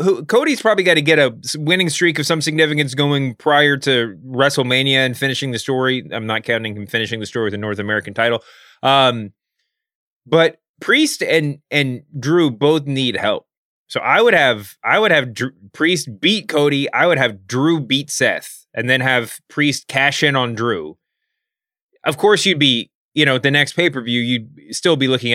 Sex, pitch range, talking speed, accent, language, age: male, 115-155 Hz, 185 wpm, American, English, 20-39